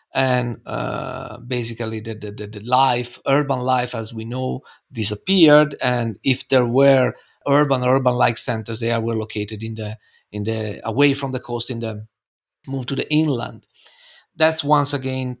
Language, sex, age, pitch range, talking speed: English, male, 50-69, 115-140 Hz, 155 wpm